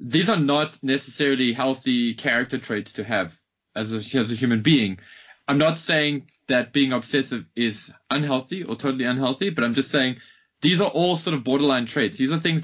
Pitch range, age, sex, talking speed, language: 115-150 Hz, 20-39, male, 185 wpm, English